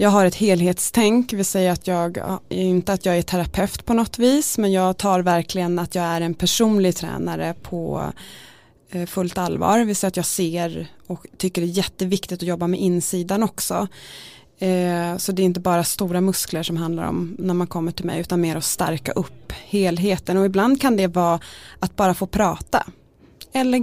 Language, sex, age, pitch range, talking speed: Swedish, female, 20-39, 175-215 Hz, 190 wpm